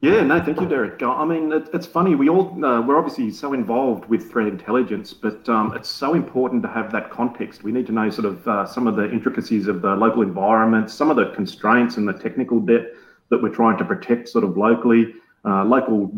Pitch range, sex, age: 100-120 Hz, male, 30-49